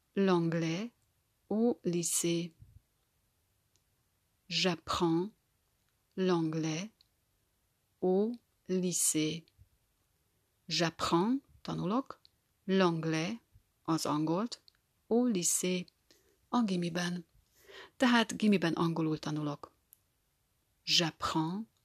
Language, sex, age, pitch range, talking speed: Hungarian, female, 40-59, 155-185 Hz, 60 wpm